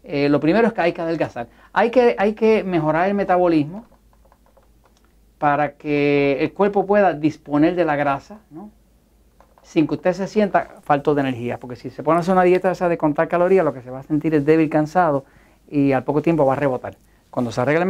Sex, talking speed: male, 220 wpm